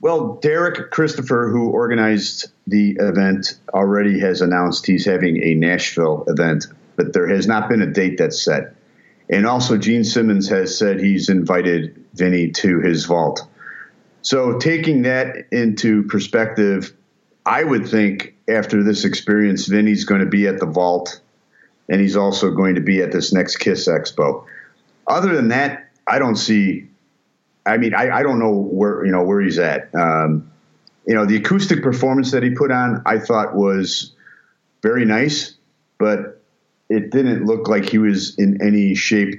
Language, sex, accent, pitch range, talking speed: English, male, American, 90-110 Hz, 165 wpm